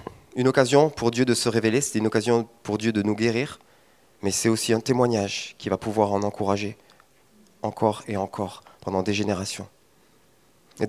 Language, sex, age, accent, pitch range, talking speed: French, male, 30-49, French, 105-140 Hz, 175 wpm